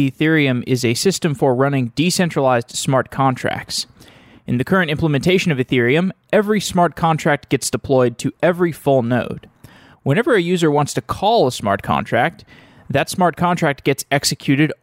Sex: male